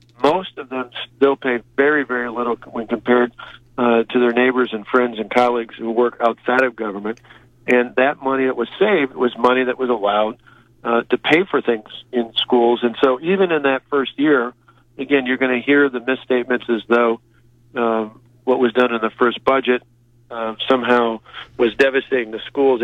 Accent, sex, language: American, male, English